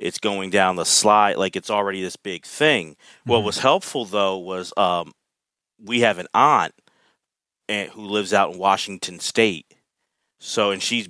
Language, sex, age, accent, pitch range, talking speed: English, male, 30-49, American, 95-115 Hz, 160 wpm